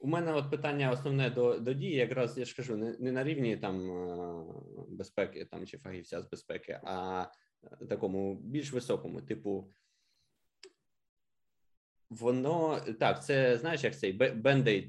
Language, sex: Ukrainian, male